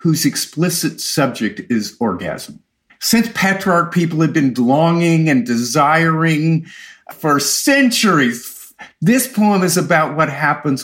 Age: 50-69